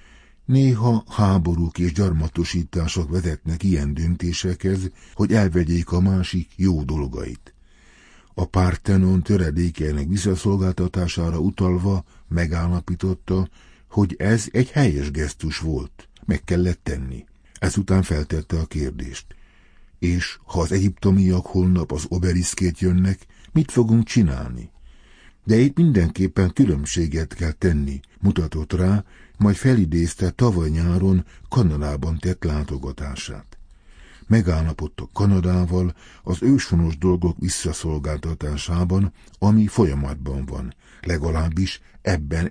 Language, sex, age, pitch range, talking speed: Hungarian, male, 60-79, 75-95 Hz, 95 wpm